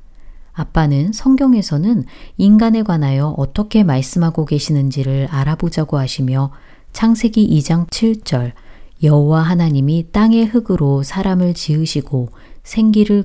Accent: native